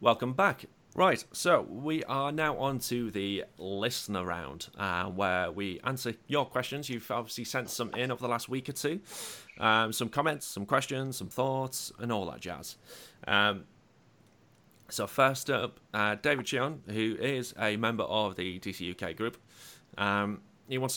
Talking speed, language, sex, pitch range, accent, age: 165 wpm, English, male, 100-130 Hz, British, 30-49